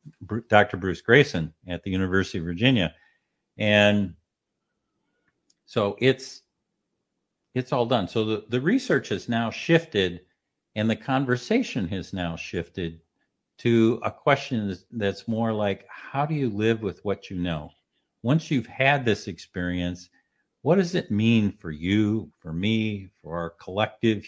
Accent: American